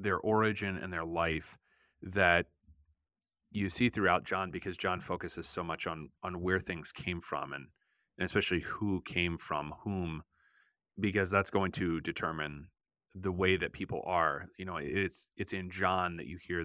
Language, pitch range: English, 85-100 Hz